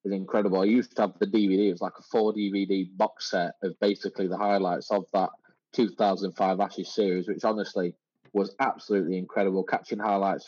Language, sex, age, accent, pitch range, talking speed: English, male, 20-39, British, 95-105 Hz, 185 wpm